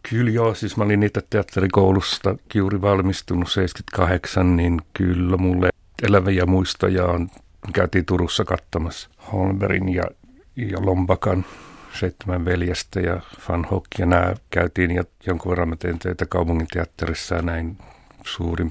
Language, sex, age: Finnish, male, 60-79